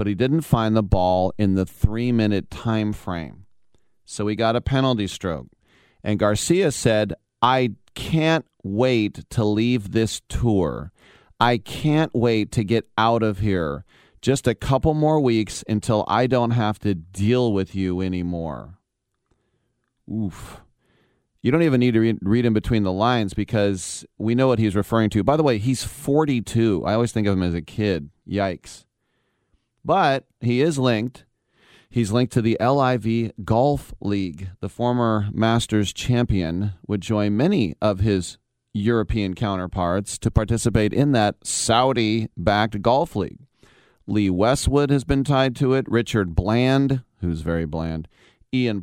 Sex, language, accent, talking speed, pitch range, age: male, English, American, 150 wpm, 100-125 Hz, 40-59